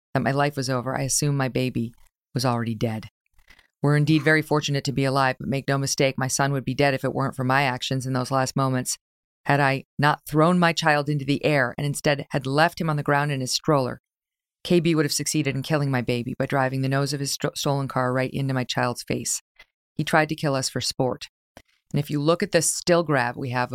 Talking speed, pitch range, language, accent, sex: 245 wpm, 130-150 Hz, English, American, female